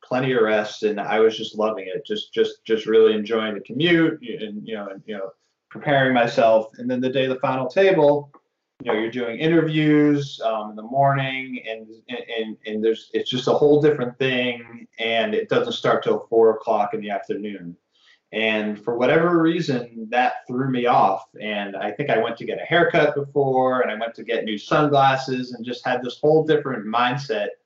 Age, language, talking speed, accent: 20-39, English, 200 wpm, American